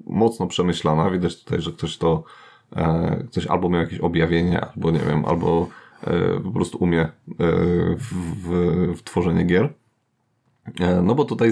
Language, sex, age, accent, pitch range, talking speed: Polish, male, 30-49, native, 85-100 Hz, 140 wpm